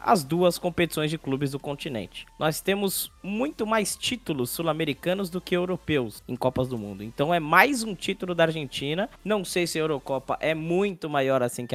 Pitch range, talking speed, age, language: 125-175 Hz, 190 wpm, 20-39, Portuguese